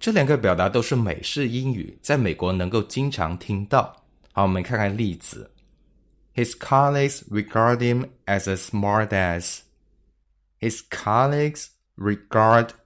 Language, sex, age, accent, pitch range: Chinese, male, 20-39, native, 90-125 Hz